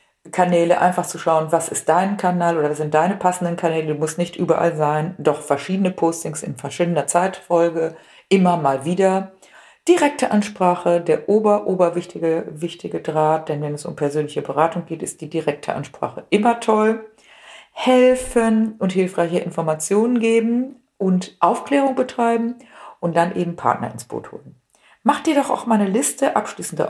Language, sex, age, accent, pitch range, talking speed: German, female, 50-69, German, 165-220 Hz, 155 wpm